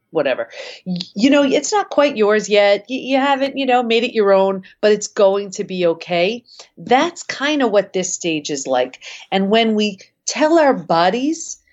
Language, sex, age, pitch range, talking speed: English, female, 40-59, 160-230 Hz, 185 wpm